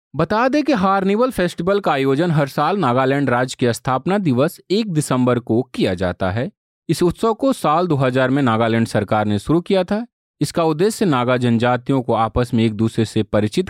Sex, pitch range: male, 120-170 Hz